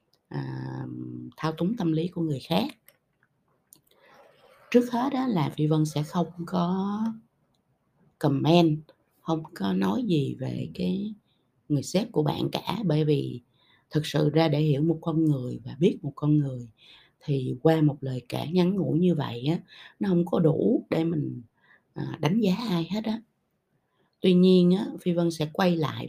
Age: 20-39